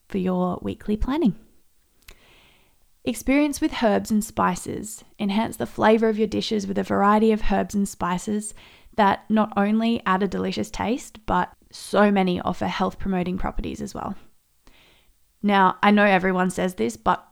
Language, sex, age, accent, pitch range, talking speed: English, female, 20-39, Australian, 185-220 Hz, 155 wpm